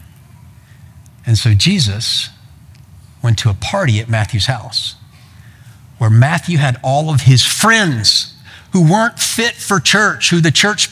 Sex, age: male, 50-69